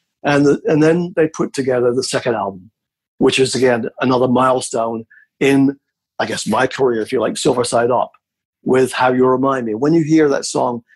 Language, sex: English, male